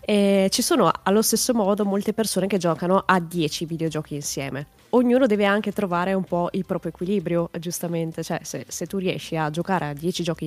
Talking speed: 195 wpm